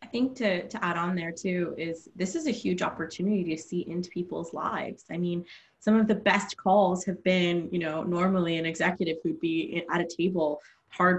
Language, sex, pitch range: English, female, 160-200 Hz